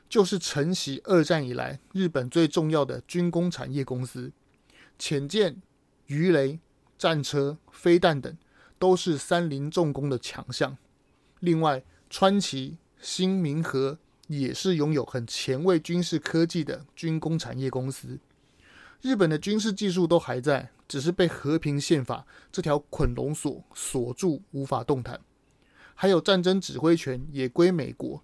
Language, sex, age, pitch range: Chinese, male, 30-49, 135-175 Hz